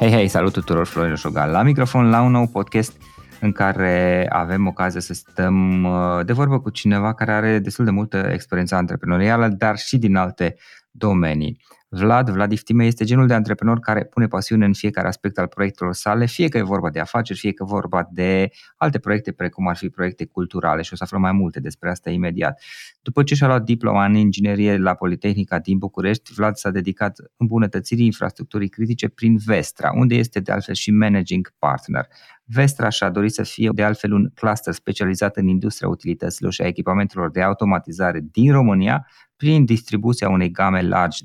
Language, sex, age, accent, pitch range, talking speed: Romanian, male, 20-39, native, 95-115 Hz, 185 wpm